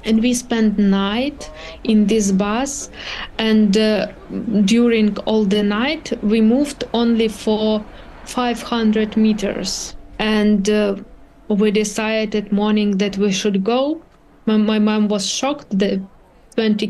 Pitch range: 205-235 Hz